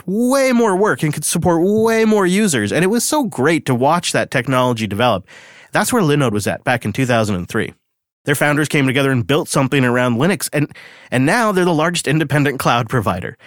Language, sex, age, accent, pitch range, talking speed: English, male, 30-49, American, 115-155 Hz, 200 wpm